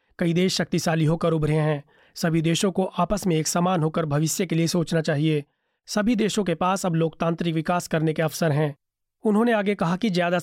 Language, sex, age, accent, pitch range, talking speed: Hindi, male, 30-49, native, 160-190 Hz, 200 wpm